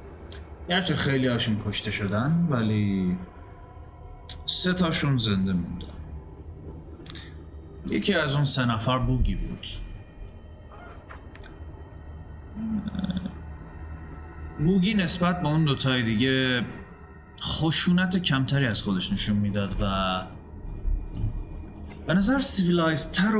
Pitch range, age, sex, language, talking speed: 80-135 Hz, 30-49, male, Persian, 90 wpm